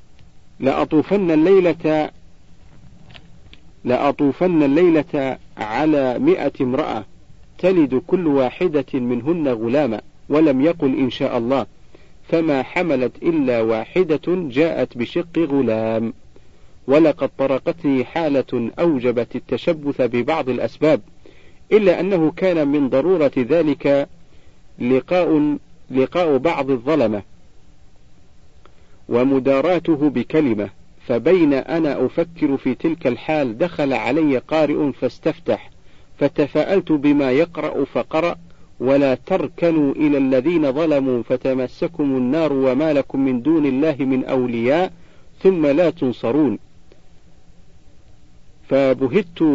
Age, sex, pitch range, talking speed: 50-69, male, 130-165 Hz, 90 wpm